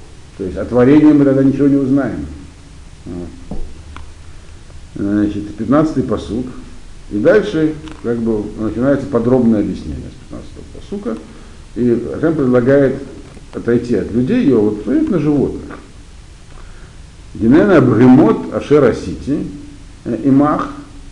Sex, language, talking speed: male, Russian, 105 wpm